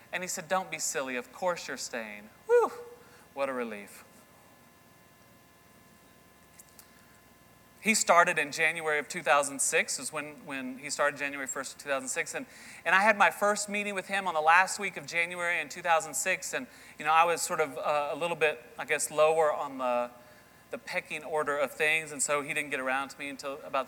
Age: 30-49